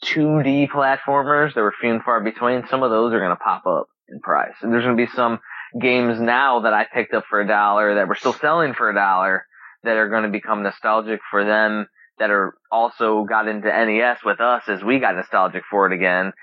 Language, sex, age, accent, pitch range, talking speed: English, male, 20-39, American, 100-120 Hz, 230 wpm